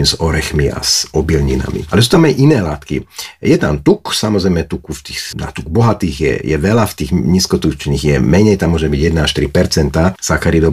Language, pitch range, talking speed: Slovak, 75-95 Hz, 195 wpm